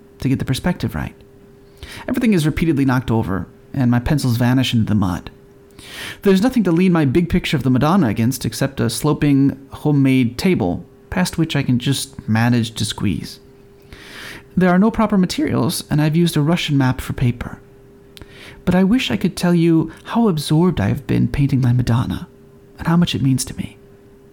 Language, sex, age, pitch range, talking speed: English, male, 30-49, 130-175 Hz, 185 wpm